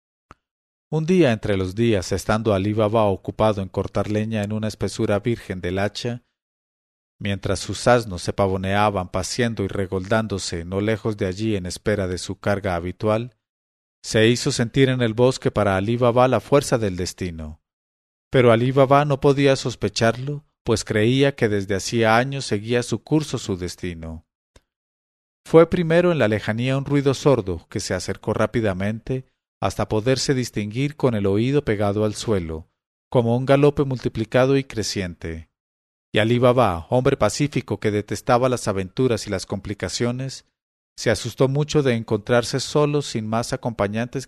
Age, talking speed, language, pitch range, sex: 40-59, 155 wpm, English, 100-125 Hz, male